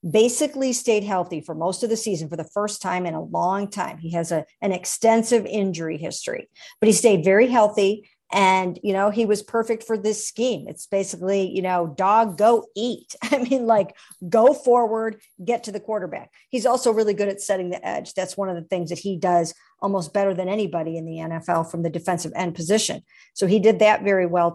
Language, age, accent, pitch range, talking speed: English, 50-69, American, 180-225 Hz, 215 wpm